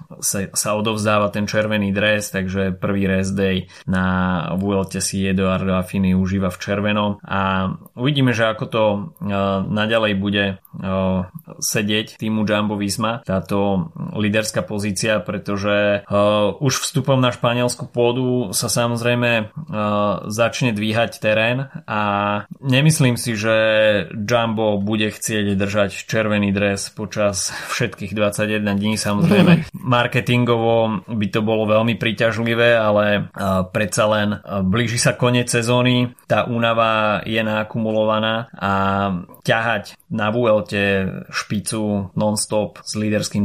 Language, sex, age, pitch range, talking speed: Slovak, male, 20-39, 100-115 Hz, 115 wpm